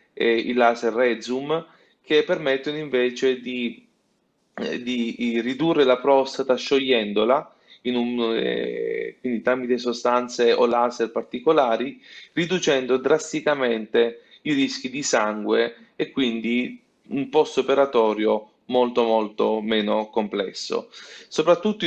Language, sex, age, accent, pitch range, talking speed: Italian, male, 30-49, native, 120-150 Hz, 100 wpm